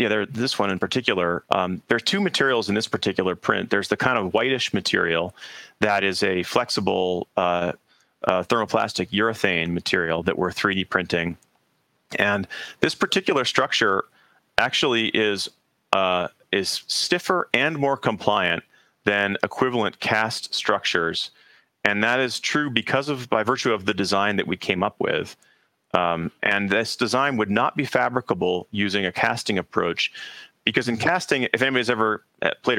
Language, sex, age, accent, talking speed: English, male, 40-59, American, 150 wpm